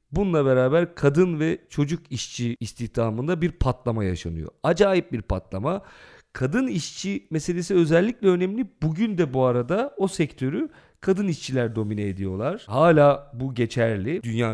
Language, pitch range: Turkish, 120-175 Hz